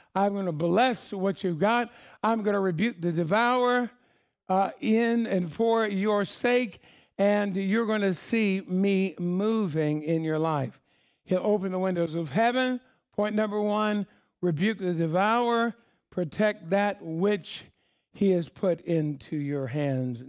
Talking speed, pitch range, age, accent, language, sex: 150 wpm, 175-215 Hz, 60-79, American, English, male